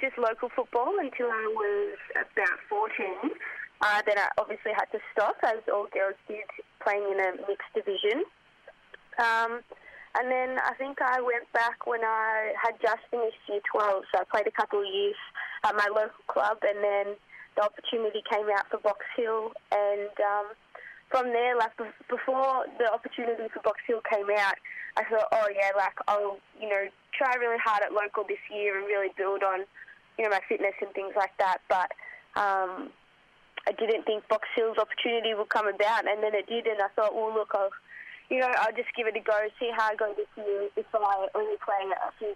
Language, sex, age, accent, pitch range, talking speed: English, female, 20-39, Australian, 200-235 Hz, 200 wpm